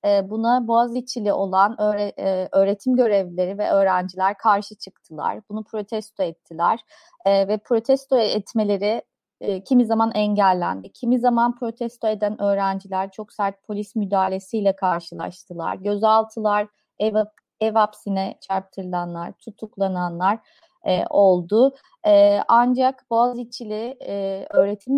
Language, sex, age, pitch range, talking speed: Turkish, female, 30-49, 195-245 Hz, 95 wpm